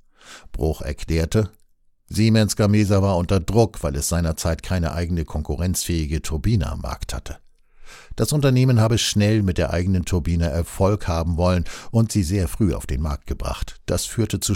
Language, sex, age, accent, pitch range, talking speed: German, male, 60-79, German, 80-105 Hz, 160 wpm